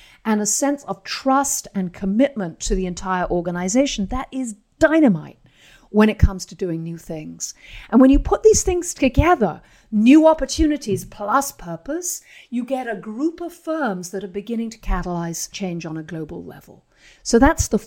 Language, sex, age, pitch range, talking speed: English, female, 50-69, 180-255 Hz, 170 wpm